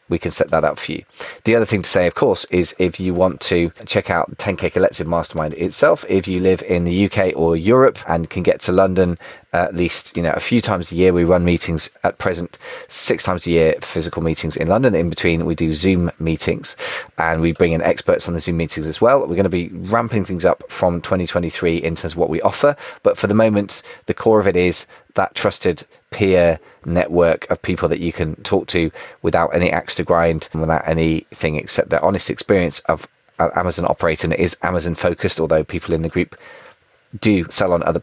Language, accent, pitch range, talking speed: English, British, 85-95 Hz, 220 wpm